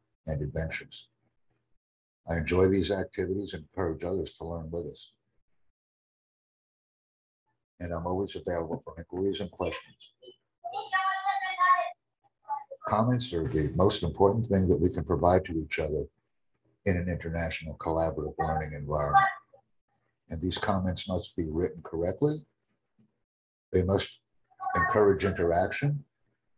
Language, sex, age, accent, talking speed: English, male, 60-79, American, 115 wpm